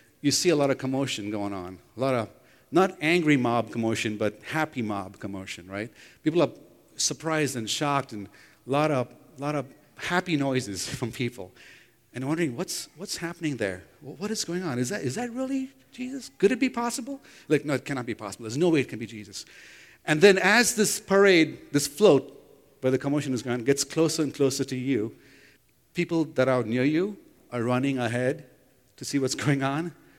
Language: English